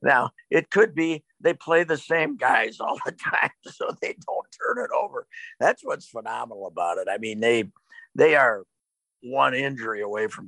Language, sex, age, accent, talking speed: English, male, 50-69, American, 185 wpm